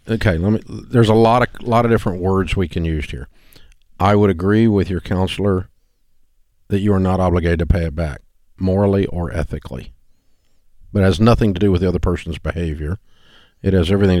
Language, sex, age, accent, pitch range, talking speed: English, male, 50-69, American, 85-110 Hz, 200 wpm